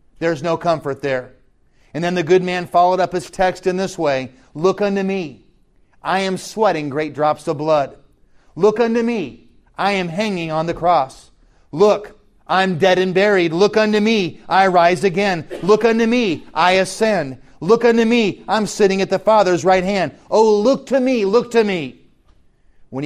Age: 40-59